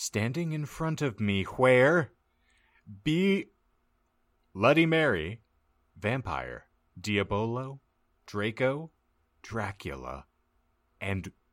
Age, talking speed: 30-49, 75 wpm